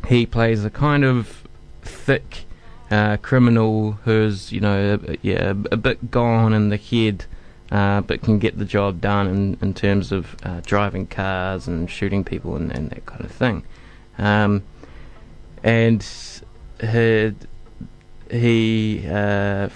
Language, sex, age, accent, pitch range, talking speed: English, male, 20-39, Australian, 100-115 Hz, 145 wpm